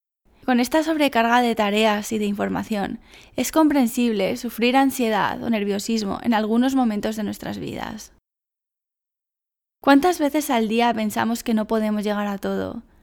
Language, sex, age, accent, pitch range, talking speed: Spanish, female, 10-29, Spanish, 215-255 Hz, 145 wpm